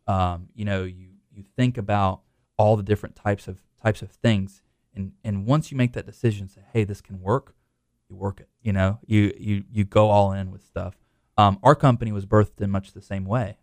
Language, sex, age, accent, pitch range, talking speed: English, male, 20-39, American, 95-115 Hz, 220 wpm